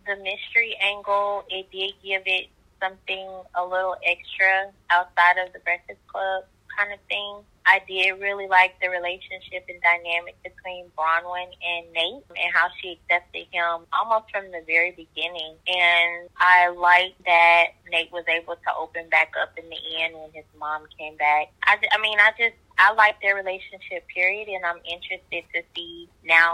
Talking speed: 170 wpm